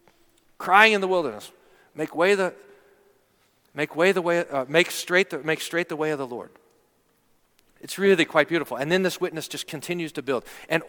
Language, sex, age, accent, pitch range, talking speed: English, male, 40-59, American, 165-230 Hz, 130 wpm